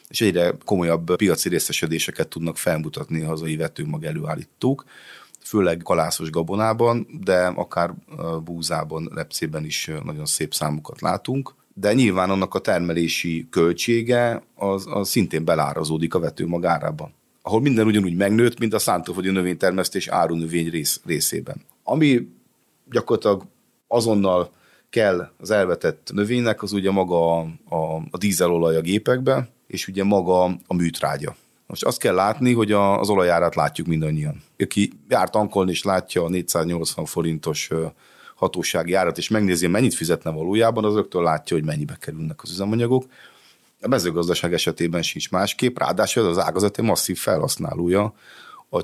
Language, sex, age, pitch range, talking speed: Hungarian, male, 30-49, 80-105 Hz, 135 wpm